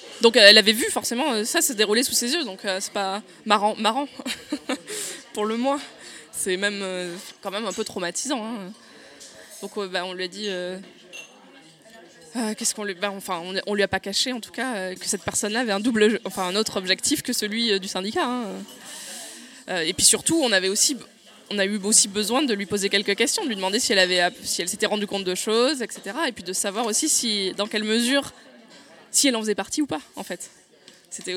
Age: 20-39